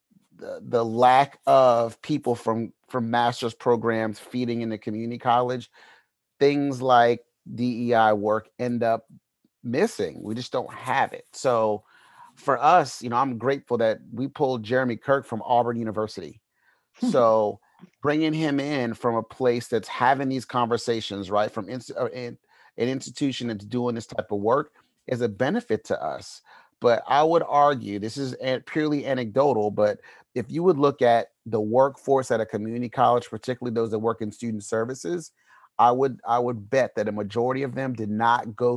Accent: American